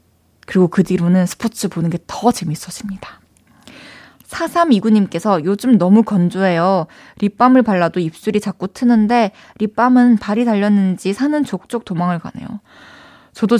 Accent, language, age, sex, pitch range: native, Korean, 20-39, female, 195-270 Hz